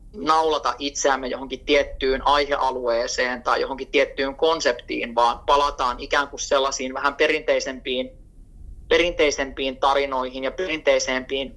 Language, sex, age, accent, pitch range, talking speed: Finnish, male, 20-39, native, 130-160 Hz, 105 wpm